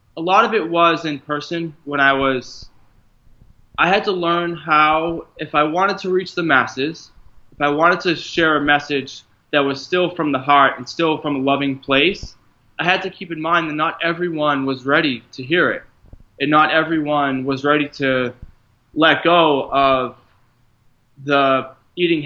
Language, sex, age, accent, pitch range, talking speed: English, male, 20-39, American, 125-155 Hz, 180 wpm